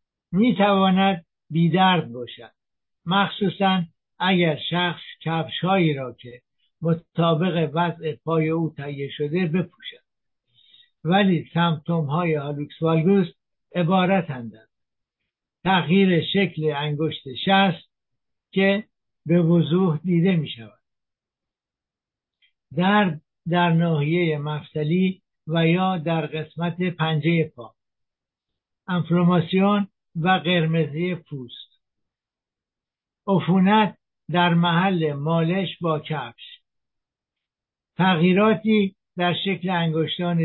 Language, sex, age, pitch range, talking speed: Persian, male, 60-79, 155-185 Hz, 90 wpm